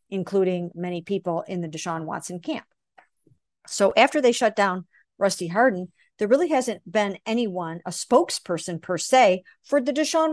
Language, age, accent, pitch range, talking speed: English, 50-69, American, 185-235 Hz, 155 wpm